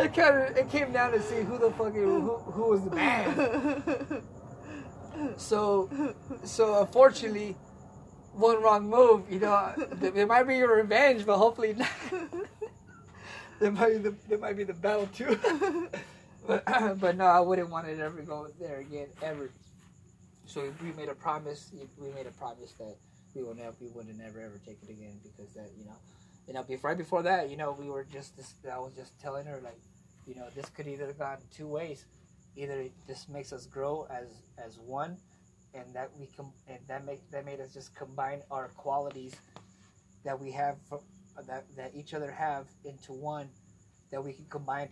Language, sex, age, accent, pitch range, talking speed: English, male, 20-39, American, 130-200 Hz, 190 wpm